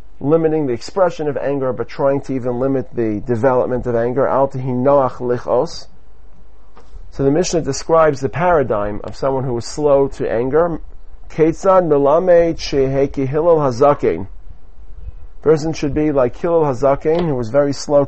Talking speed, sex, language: 145 wpm, male, English